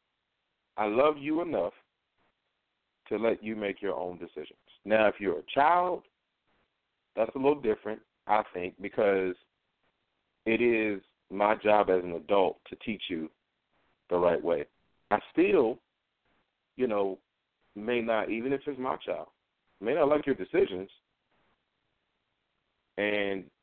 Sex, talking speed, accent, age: male, 135 wpm, American, 40-59